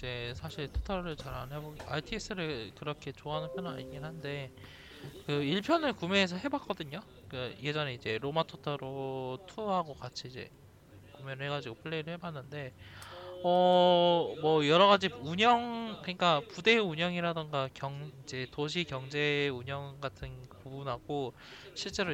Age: 20-39